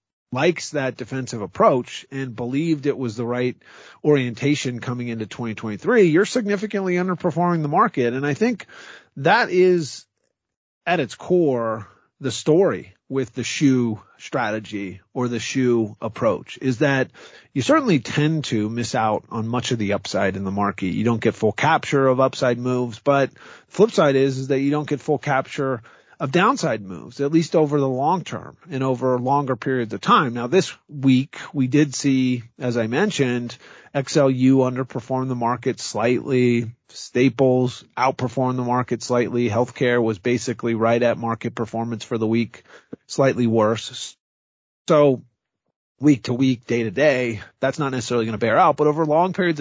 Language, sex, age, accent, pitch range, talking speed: English, male, 40-59, American, 115-140 Hz, 165 wpm